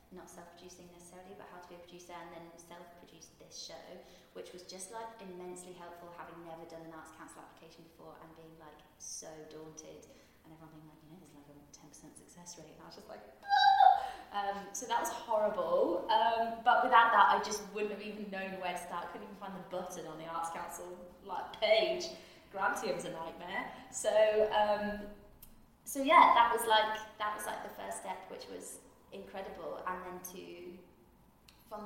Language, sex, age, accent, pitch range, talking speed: English, female, 20-39, British, 175-210 Hz, 195 wpm